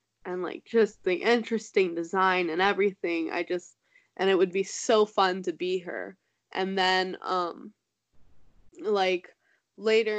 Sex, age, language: female, 10-29, English